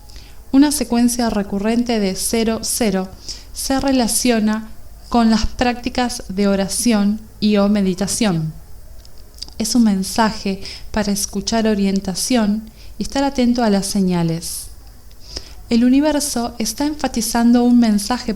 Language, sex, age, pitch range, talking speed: Spanish, female, 20-39, 195-245 Hz, 110 wpm